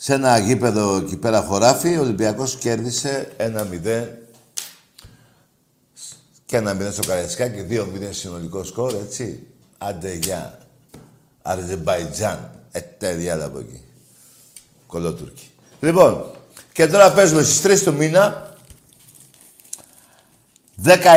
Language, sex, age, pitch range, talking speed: Greek, male, 60-79, 100-145 Hz, 110 wpm